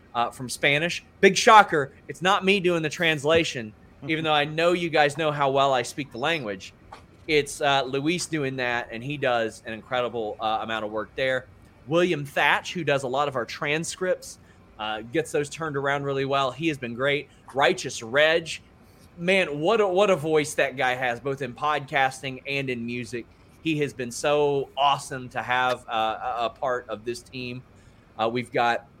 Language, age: English, 30-49